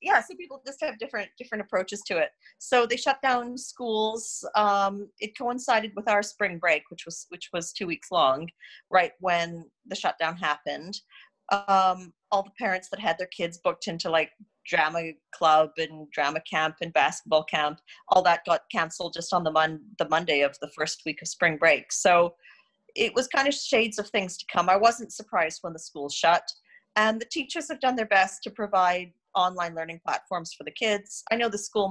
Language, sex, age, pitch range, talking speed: English, female, 40-59, 165-225 Hz, 200 wpm